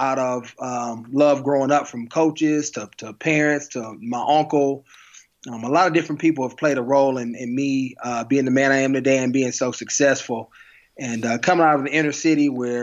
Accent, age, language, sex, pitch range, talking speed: American, 20-39, English, male, 125-140 Hz, 220 wpm